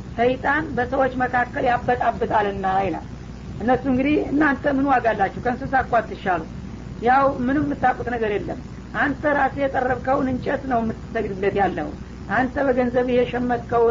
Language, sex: Amharic, female